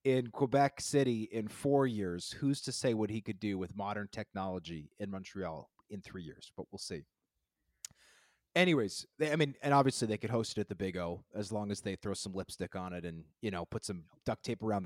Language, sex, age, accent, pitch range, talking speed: English, male, 30-49, American, 110-150 Hz, 220 wpm